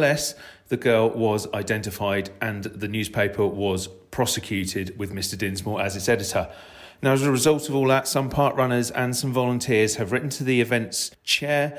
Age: 40-59